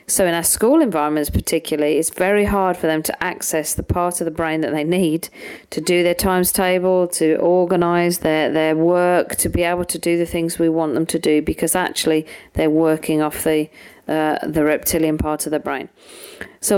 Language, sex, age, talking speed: English, female, 40-59, 205 wpm